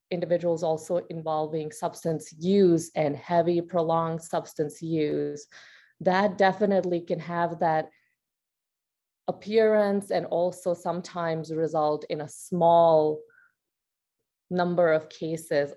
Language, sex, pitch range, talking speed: English, female, 155-180 Hz, 100 wpm